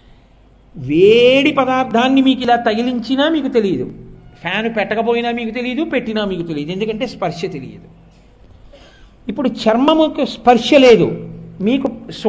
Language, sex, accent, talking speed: English, male, Indian, 75 wpm